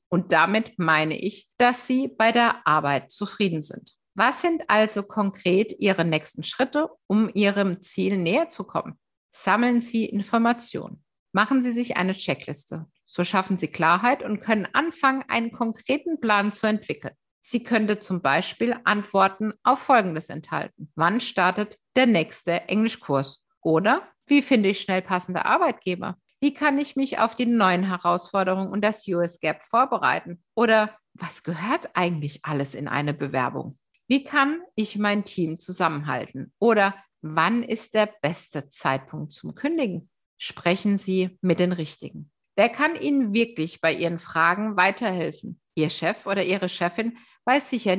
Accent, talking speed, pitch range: German, 150 wpm, 170-230 Hz